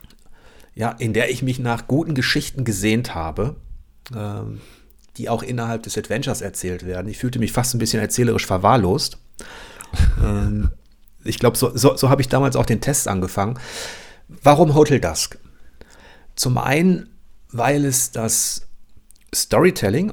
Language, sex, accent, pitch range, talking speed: German, male, German, 105-130 Hz, 135 wpm